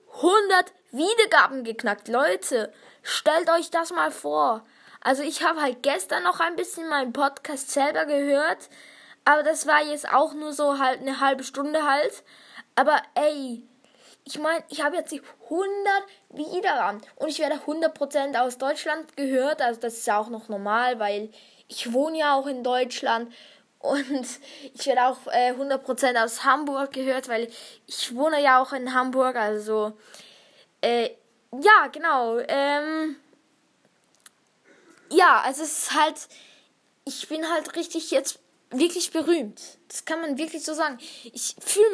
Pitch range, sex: 250-315 Hz, female